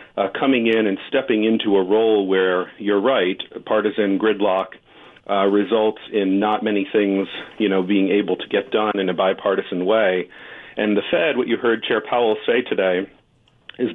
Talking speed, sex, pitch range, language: 175 wpm, male, 95-115 Hz, English